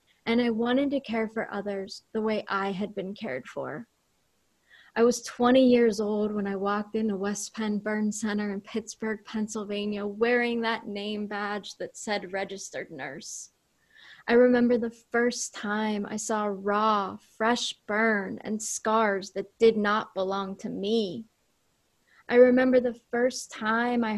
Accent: American